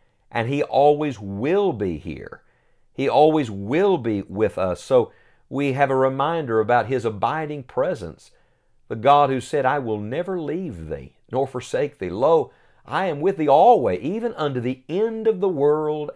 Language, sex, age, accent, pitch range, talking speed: English, male, 50-69, American, 100-140 Hz, 170 wpm